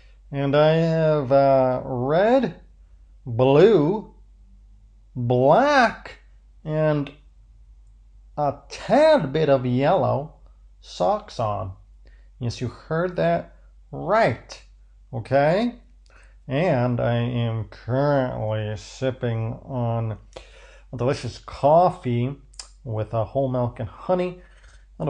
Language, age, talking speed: English, 40-59, 90 wpm